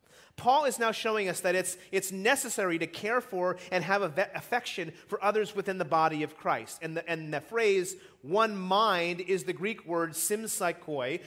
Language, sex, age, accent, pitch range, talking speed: English, male, 30-49, American, 160-215 Hz, 190 wpm